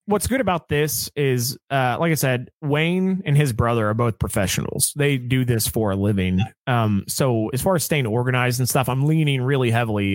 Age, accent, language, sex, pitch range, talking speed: 30-49, American, English, male, 105-135 Hz, 205 wpm